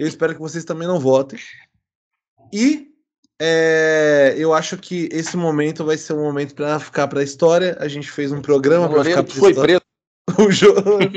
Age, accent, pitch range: 20-39, Brazilian, 130-165 Hz